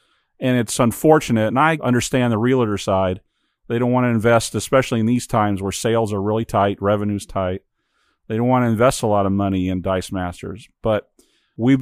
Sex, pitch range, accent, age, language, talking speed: male, 110-130 Hz, American, 40-59, English, 200 wpm